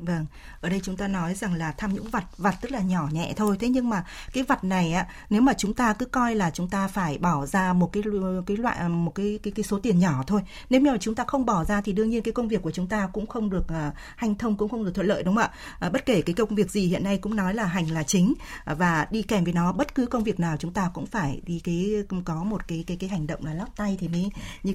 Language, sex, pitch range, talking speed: Vietnamese, female, 175-225 Hz, 295 wpm